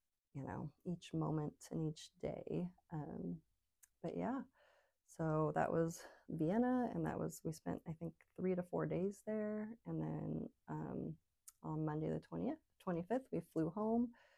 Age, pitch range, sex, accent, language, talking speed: 30-49, 155-195 Hz, female, American, English, 155 wpm